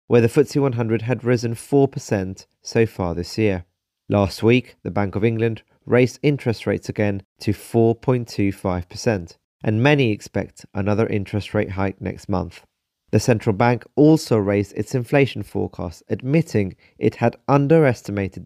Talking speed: 145 wpm